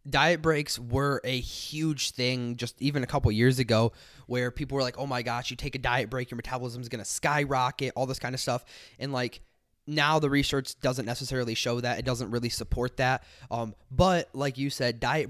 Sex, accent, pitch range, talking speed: male, American, 120-140 Hz, 215 wpm